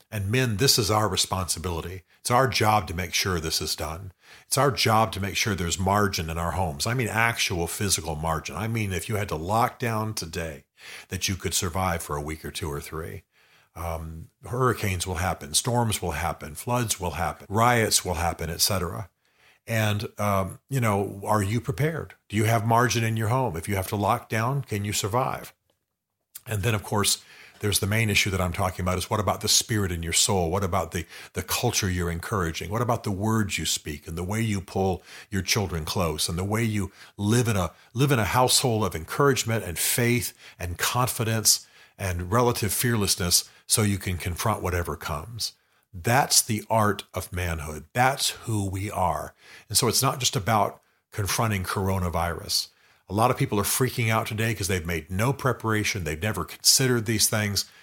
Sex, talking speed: male, 200 wpm